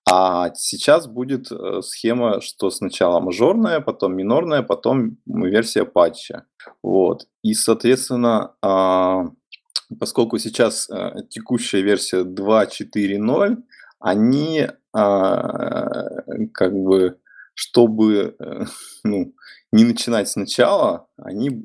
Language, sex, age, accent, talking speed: Russian, male, 20-39, native, 80 wpm